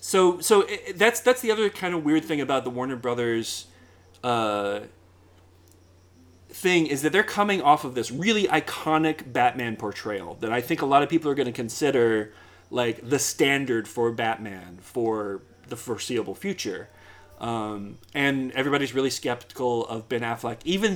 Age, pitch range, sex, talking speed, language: 30-49, 105-155 Hz, male, 165 wpm, English